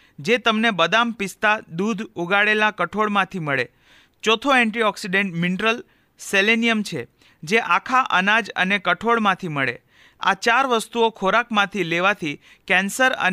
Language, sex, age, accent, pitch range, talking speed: Gujarati, male, 40-59, native, 175-225 Hz, 115 wpm